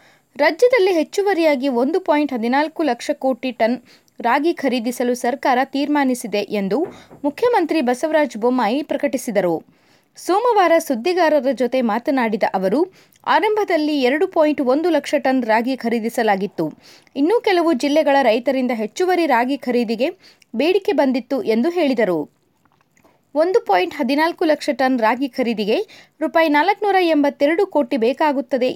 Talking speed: 100 wpm